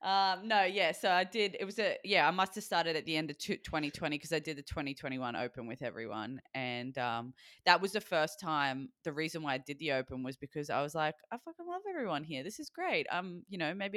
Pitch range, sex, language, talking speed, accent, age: 120-155 Hz, female, English, 245 wpm, Australian, 20-39